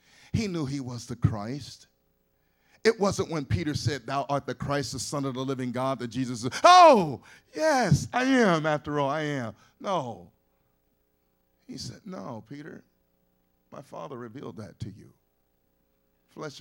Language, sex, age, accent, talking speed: English, male, 50-69, American, 160 wpm